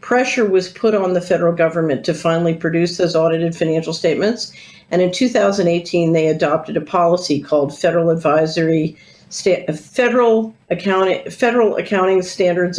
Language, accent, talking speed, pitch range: English, American, 140 wpm, 165-195 Hz